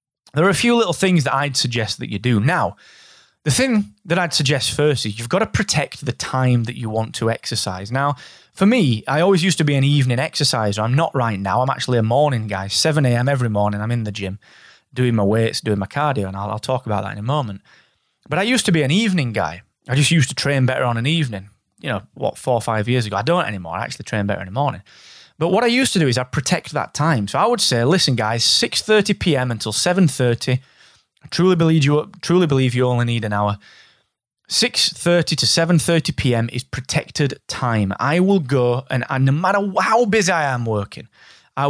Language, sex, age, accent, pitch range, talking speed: English, male, 20-39, British, 115-160 Hz, 235 wpm